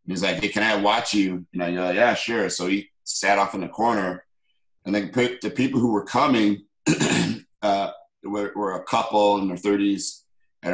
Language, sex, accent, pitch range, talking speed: English, male, American, 90-105 Hz, 195 wpm